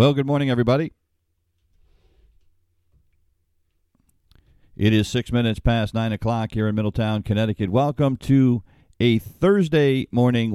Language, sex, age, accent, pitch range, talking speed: English, male, 50-69, American, 90-110 Hz, 115 wpm